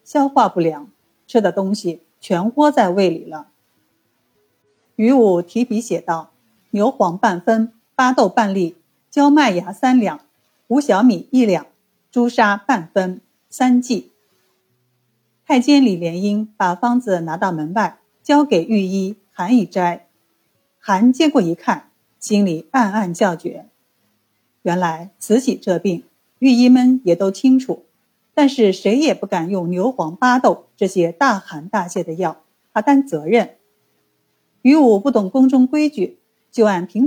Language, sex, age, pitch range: Chinese, female, 50-69, 175-245 Hz